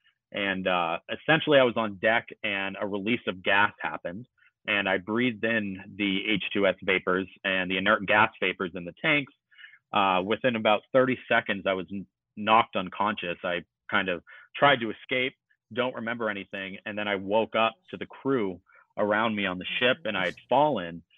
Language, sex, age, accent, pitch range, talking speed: English, male, 30-49, American, 95-120 Hz, 180 wpm